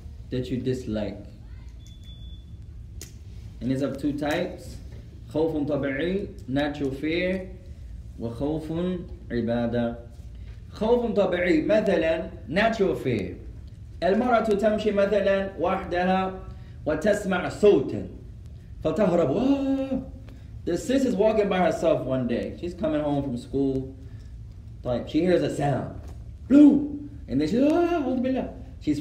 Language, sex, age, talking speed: English, male, 20-39, 100 wpm